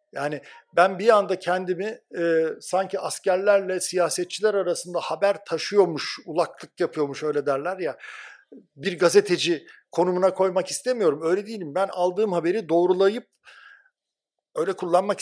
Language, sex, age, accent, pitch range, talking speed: Turkish, male, 60-79, native, 150-195 Hz, 120 wpm